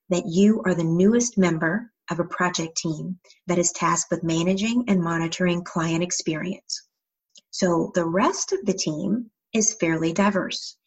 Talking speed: 155 wpm